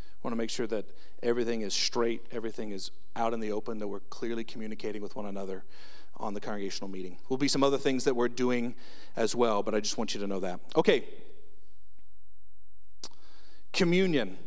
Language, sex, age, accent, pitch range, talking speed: English, male, 40-59, American, 105-130 Hz, 195 wpm